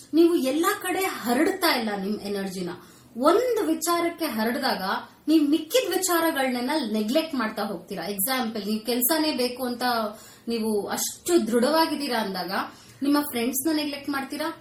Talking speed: 120 wpm